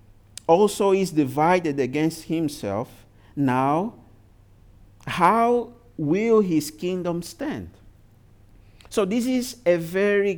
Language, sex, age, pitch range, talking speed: English, male, 50-69, 110-175 Hz, 95 wpm